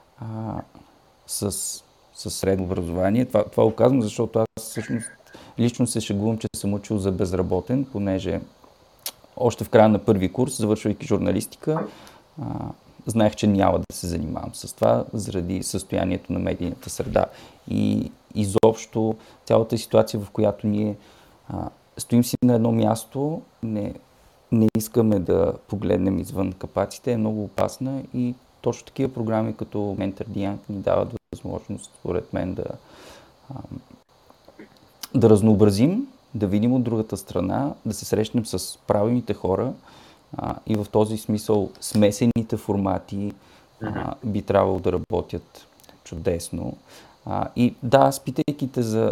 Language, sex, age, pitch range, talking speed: Bulgarian, male, 40-59, 100-120 Hz, 135 wpm